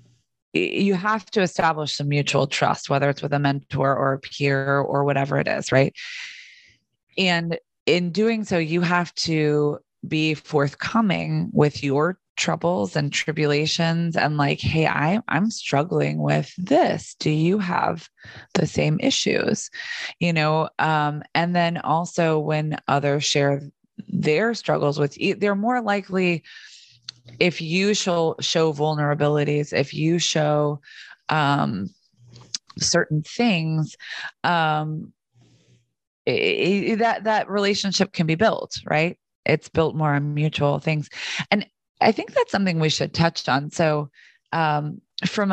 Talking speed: 135 wpm